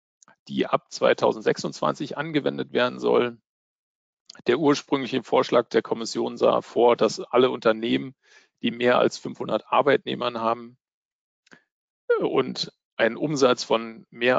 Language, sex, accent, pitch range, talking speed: German, male, German, 115-140 Hz, 115 wpm